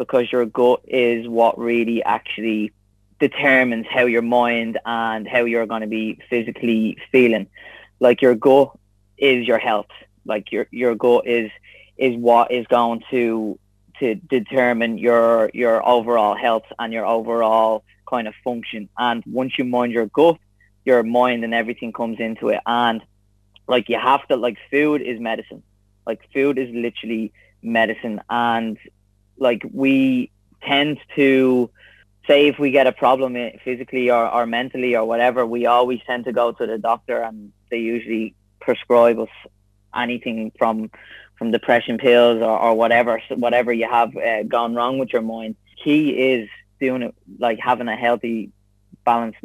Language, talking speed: English, 160 wpm